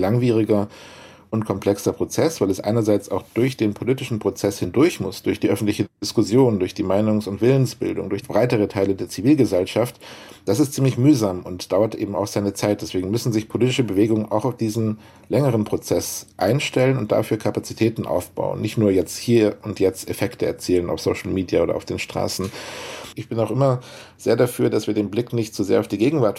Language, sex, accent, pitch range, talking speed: German, male, German, 100-120 Hz, 190 wpm